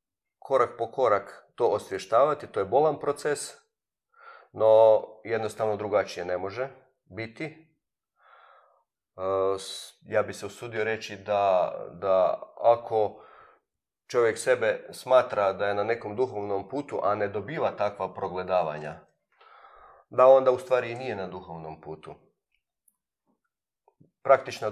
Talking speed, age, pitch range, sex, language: 110 wpm, 40-59, 100-140 Hz, male, Croatian